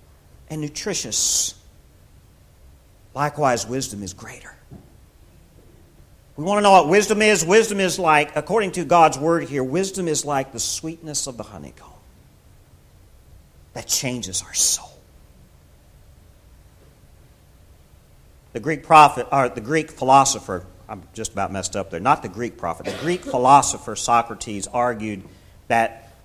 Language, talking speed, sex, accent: English, 130 wpm, male, American